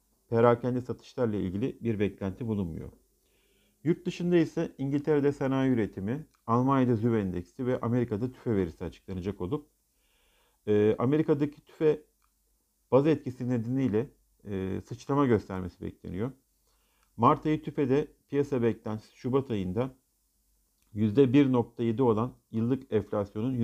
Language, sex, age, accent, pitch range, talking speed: Turkish, male, 50-69, native, 105-140 Hz, 110 wpm